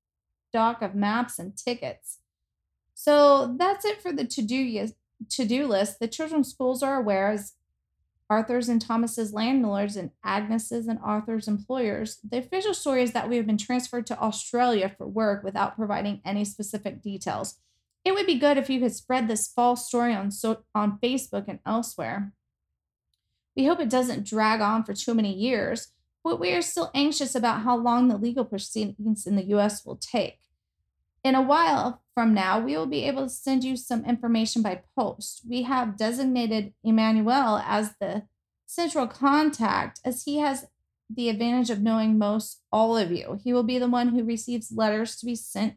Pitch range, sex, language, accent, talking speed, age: 210-255 Hz, female, English, American, 175 wpm, 20-39